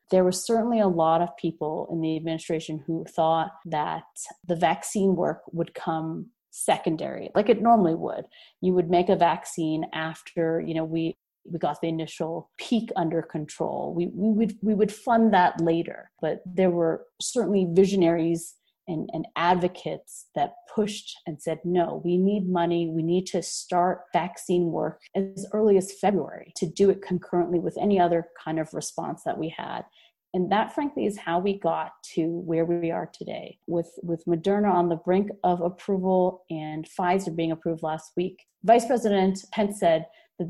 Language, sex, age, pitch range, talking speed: English, female, 30-49, 165-200 Hz, 175 wpm